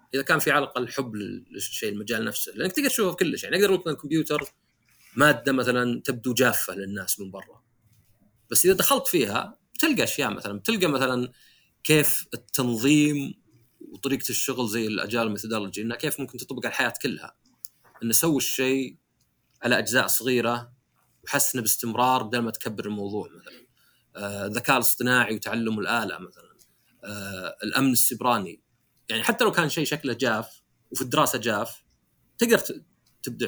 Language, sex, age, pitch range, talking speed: Arabic, male, 30-49, 115-135 Hz, 150 wpm